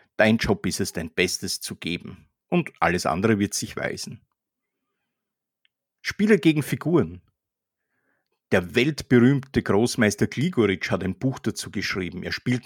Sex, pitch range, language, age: male, 105-145 Hz, German, 50-69